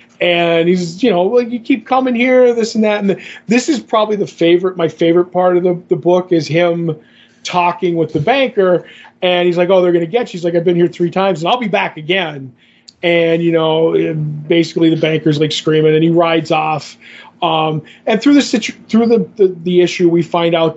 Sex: male